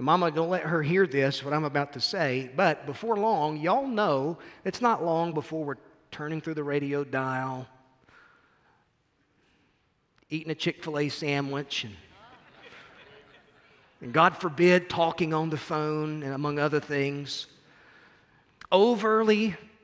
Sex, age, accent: male, 40-59, American